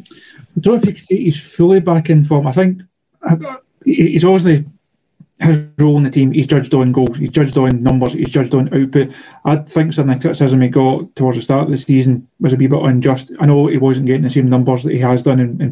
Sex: male